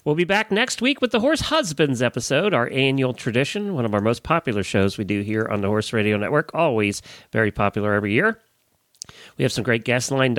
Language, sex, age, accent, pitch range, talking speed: English, male, 40-59, American, 105-150 Hz, 220 wpm